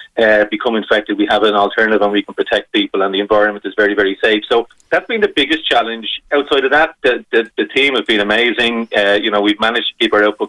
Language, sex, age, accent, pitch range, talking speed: English, male, 30-49, Irish, 105-115 Hz, 250 wpm